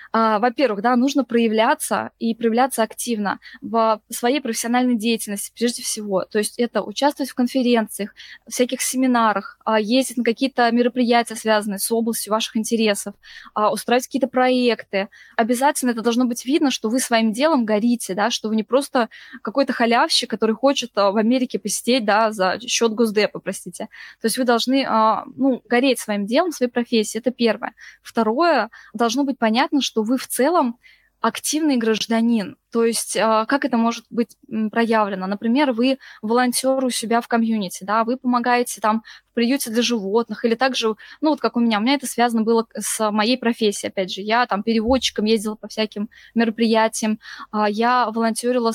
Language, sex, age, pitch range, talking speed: Russian, female, 20-39, 220-250 Hz, 160 wpm